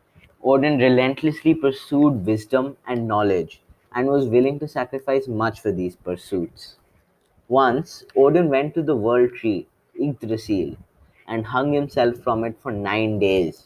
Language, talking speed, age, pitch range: English, 135 wpm, 20-39, 110-140 Hz